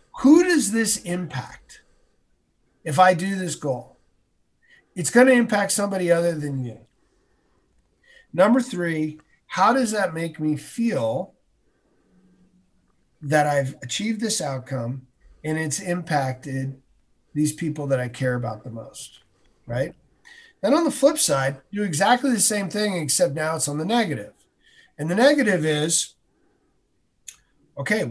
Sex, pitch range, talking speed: male, 135-180 Hz, 135 wpm